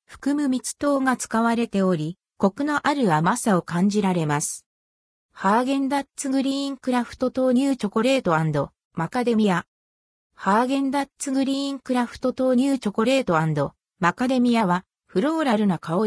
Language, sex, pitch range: Japanese, female, 180-265 Hz